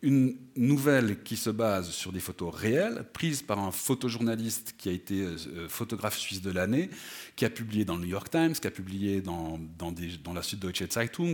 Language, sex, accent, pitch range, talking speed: French, male, French, 100-150 Hz, 200 wpm